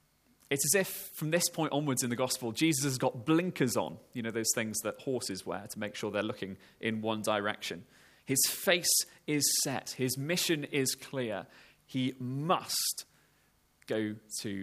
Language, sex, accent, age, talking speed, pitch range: English, male, British, 20-39, 170 wpm, 110-150 Hz